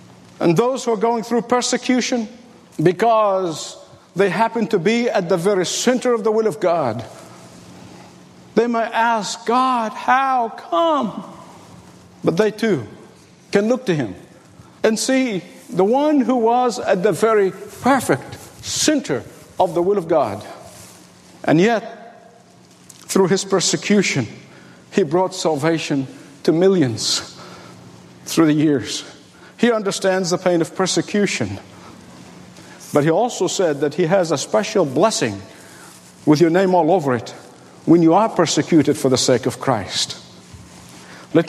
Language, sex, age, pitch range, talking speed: English, male, 50-69, 160-230 Hz, 135 wpm